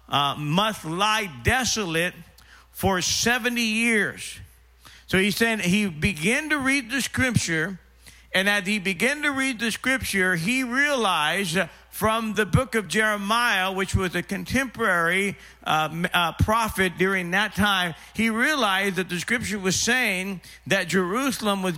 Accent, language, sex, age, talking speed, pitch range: American, English, male, 50-69, 140 wpm, 170-220 Hz